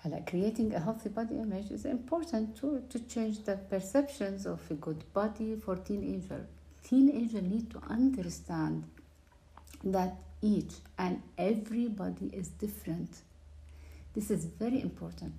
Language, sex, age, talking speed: English, female, 60-79, 135 wpm